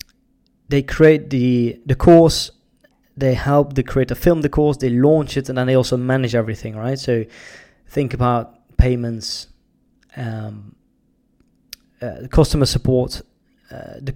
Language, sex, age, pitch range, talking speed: English, male, 20-39, 120-135 Hz, 135 wpm